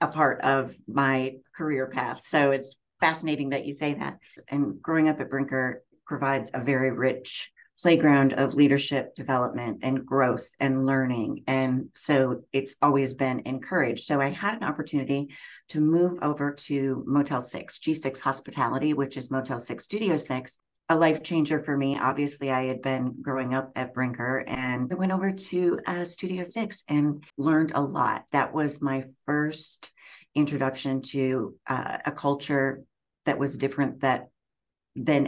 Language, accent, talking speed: English, American, 160 wpm